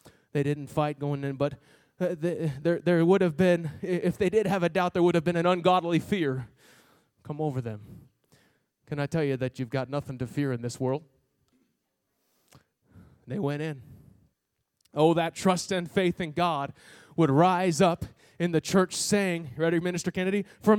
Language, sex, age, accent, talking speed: English, male, 20-39, American, 175 wpm